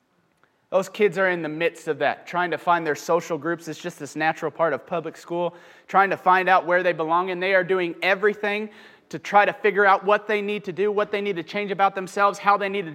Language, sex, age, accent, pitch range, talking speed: English, male, 30-49, American, 160-195 Hz, 255 wpm